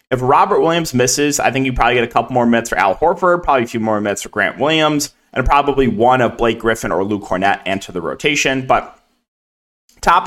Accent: American